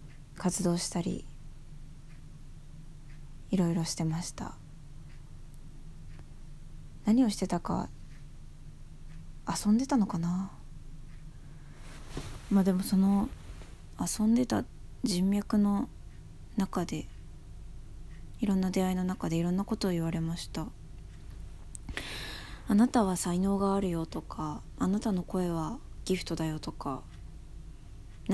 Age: 20-39